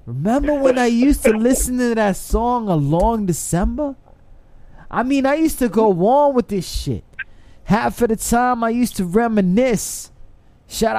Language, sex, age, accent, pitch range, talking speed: English, male, 20-39, American, 160-260 Hz, 170 wpm